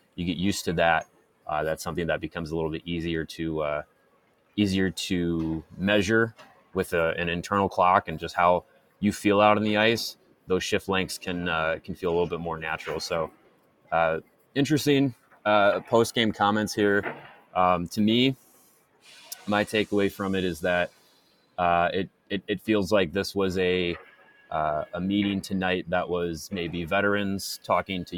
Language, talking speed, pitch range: English, 170 wpm, 85-100 Hz